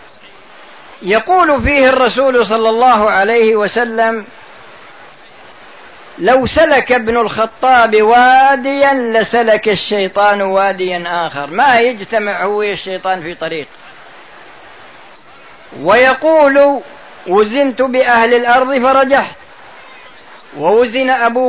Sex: female